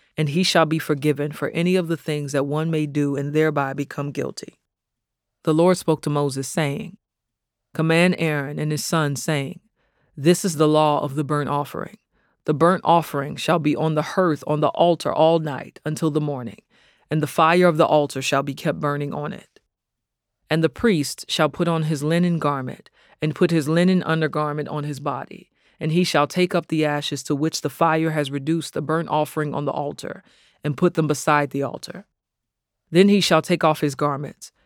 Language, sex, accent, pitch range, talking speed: English, female, American, 145-165 Hz, 200 wpm